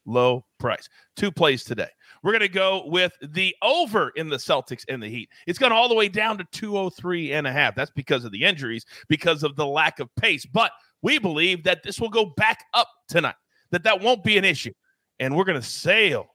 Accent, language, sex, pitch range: American, English, male, 145-205 Hz